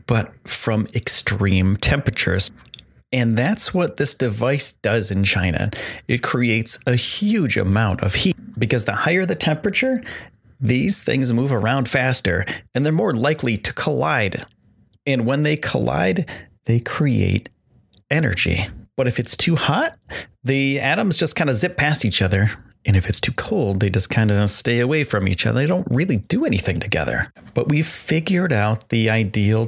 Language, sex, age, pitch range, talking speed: English, male, 30-49, 105-135 Hz, 165 wpm